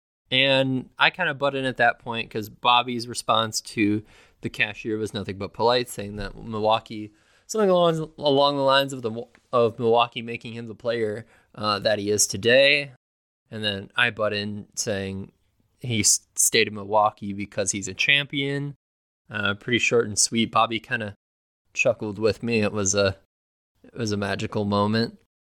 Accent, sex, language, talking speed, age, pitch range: American, male, English, 170 wpm, 20-39, 100-130 Hz